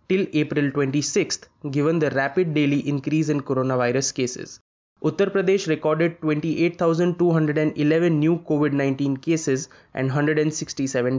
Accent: Indian